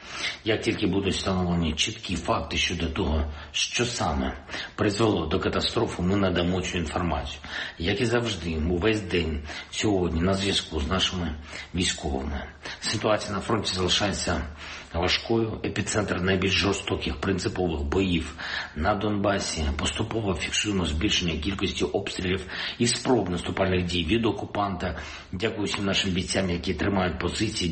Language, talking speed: Ukrainian, 125 wpm